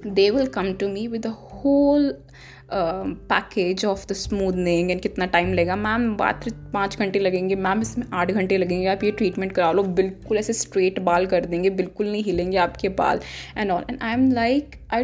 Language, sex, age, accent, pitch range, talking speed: English, female, 10-29, Indian, 180-230 Hz, 150 wpm